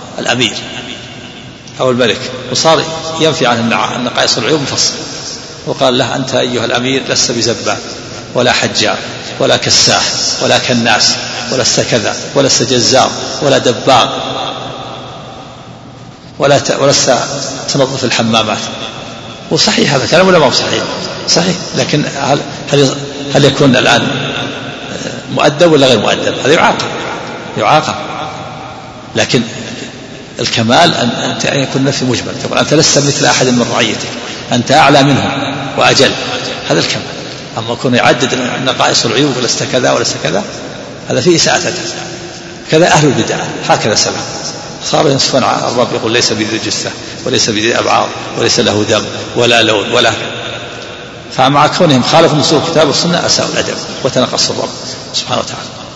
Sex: male